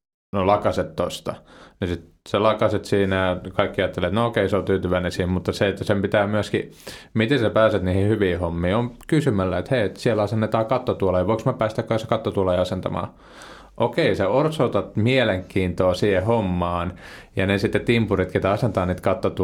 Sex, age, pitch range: male, 30-49, 90-110 Hz